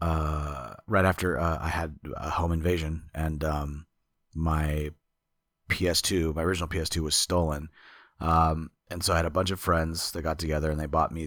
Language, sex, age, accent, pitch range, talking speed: English, male, 30-49, American, 75-90 Hz, 180 wpm